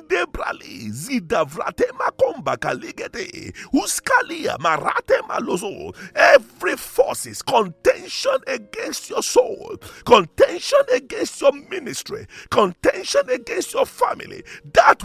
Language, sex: English, male